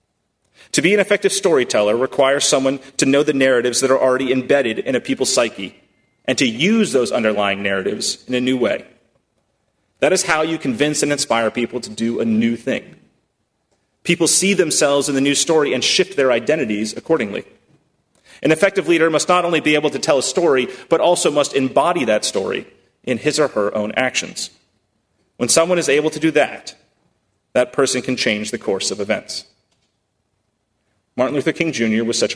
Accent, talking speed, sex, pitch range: American, 185 wpm, male, 120-160 Hz